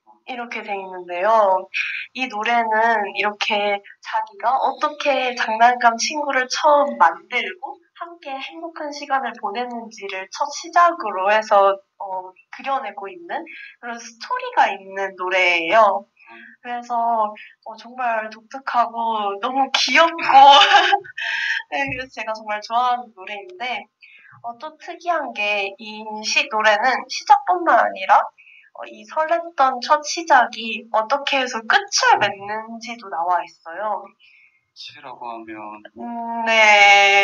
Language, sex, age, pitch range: Korean, female, 20-39, 210-280 Hz